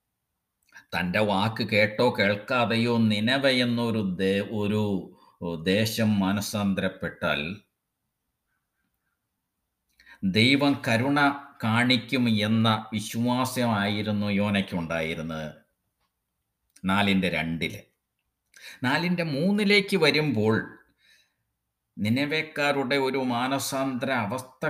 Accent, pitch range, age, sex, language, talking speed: native, 105-135 Hz, 50-69, male, Malayalam, 55 wpm